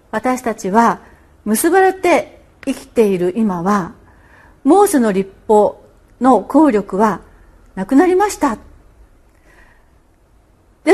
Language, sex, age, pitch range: Japanese, female, 40-59, 190-310 Hz